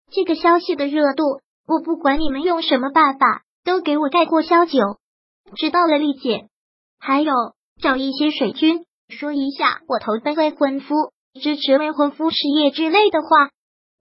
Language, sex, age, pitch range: Chinese, male, 20-39, 270-330 Hz